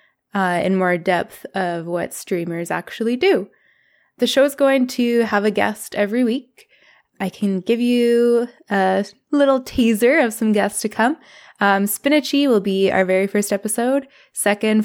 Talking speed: 160 wpm